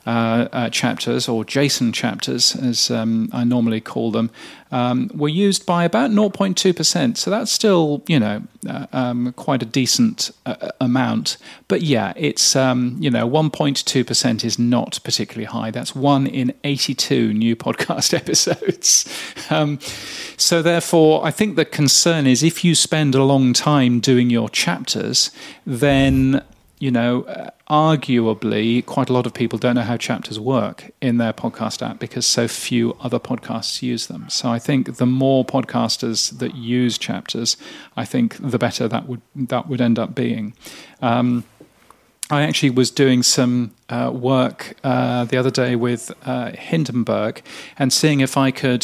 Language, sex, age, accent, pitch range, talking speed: English, male, 40-59, British, 120-145 Hz, 160 wpm